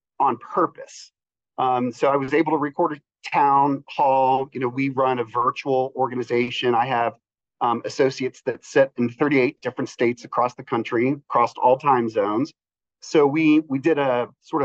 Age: 40-59